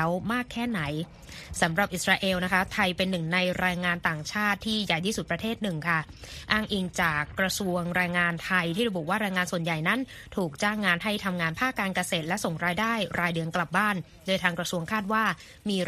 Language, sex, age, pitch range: Thai, female, 20-39, 175-205 Hz